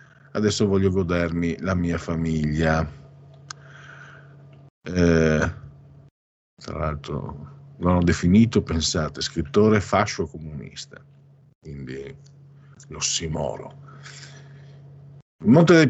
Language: Italian